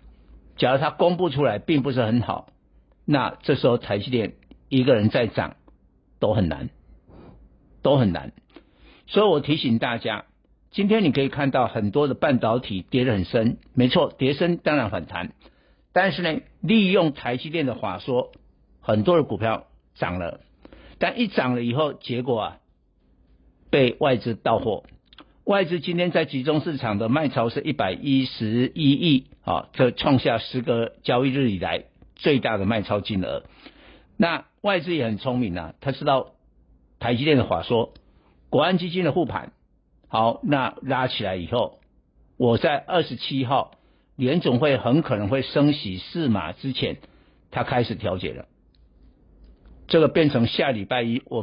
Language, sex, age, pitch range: Chinese, male, 60-79, 105-150 Hz